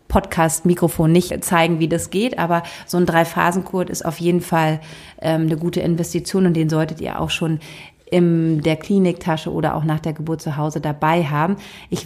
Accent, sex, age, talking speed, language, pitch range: German, female, 30-49, 195 wpm, German, 160-180 Hz